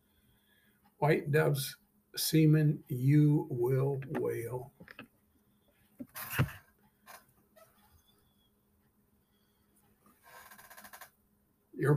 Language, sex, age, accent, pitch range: English, male, 60-79, American, 125-155 Hz